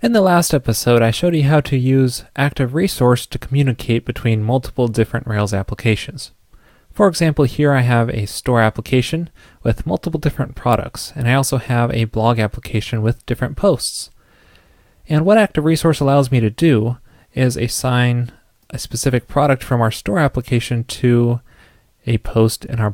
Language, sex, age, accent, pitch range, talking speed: English, male, 20-39, American, 110-130 Hz, 165 wpm